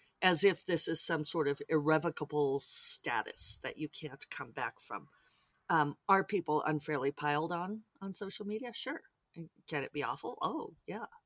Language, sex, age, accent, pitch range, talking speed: English, female, 40-59, American, 150-195 Hz, 165 wpm